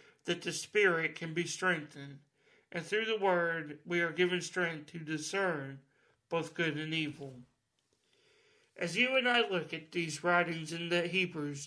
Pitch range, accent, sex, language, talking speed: 155-195 Hz, American, male, English, 160 wpm